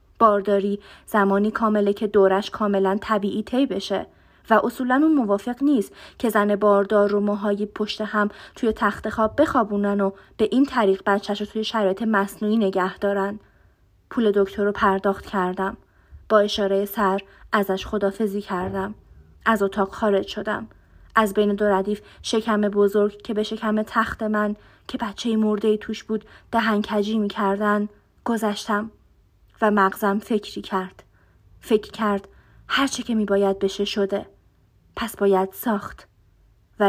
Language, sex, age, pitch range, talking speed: Persian, female, 30-49, 200-220 Hz, 140 wpm